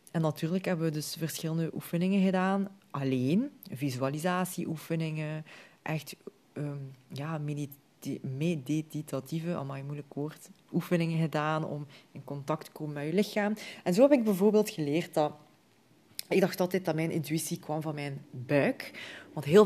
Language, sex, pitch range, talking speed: Dutch, female, 150-190 Hz, 145 wpm